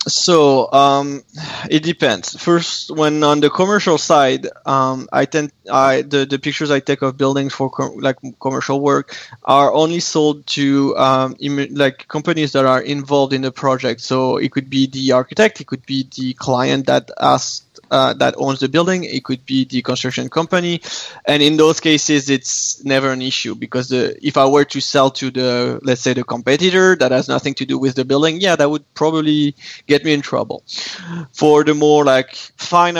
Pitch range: 135-160 Hz